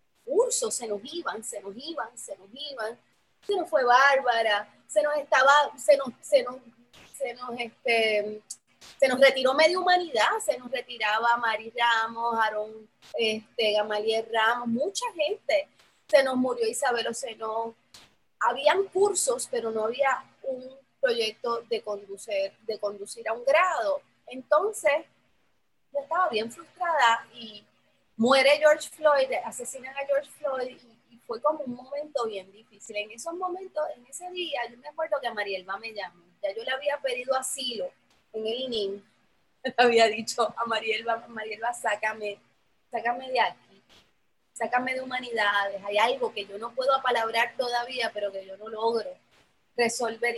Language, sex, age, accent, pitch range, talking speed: Spanish, female, 30-49, American, 220-280 Hz, 155 wpm